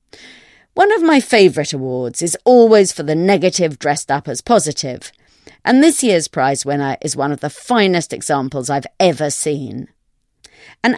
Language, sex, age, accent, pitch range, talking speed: English, female, 40-59, British, 140-215 Hz, 160 wpm